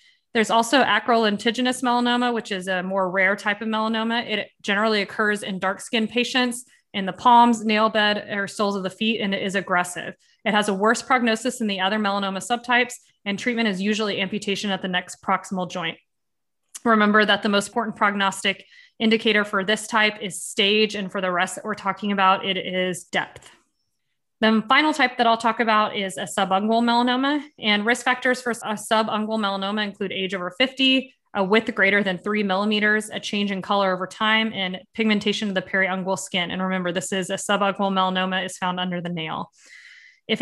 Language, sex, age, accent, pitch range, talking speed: English, female, 20-39, American, 195-230 Hz, 195 wpm